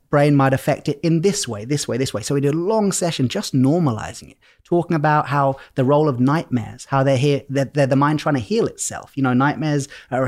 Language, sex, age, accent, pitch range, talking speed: English, male, 30-49, British, 125-150 Hz, 240 wpm